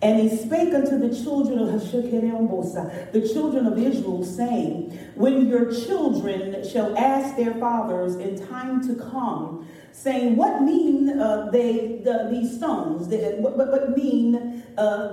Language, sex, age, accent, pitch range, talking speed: English, female, 40-59, American, 225-300 Hz, 145 wpm